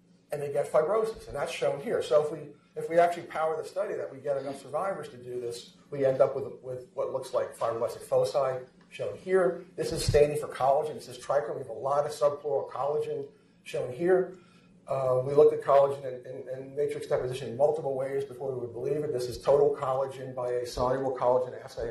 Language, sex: English, male